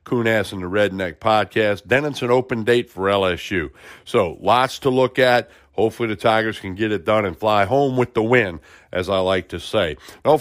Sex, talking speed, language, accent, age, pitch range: male, 210 wpm, English, American, 60-79, 100-125 Hz